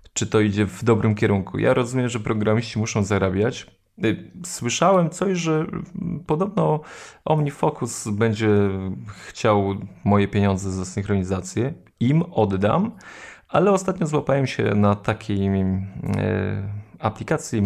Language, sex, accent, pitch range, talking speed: Polish, male, native, 100-145 Hz, 110 wpm